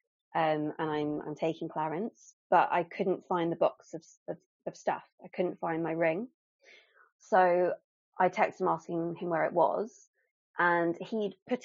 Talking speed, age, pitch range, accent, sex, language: 165 wpm, 20-39, 165-195 Hz, British, female, English